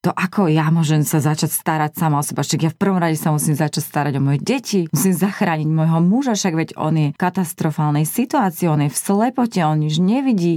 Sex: female